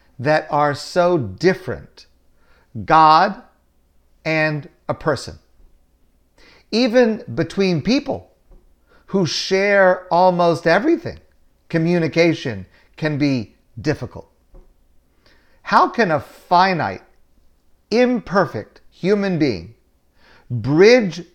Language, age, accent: English, 50-69, American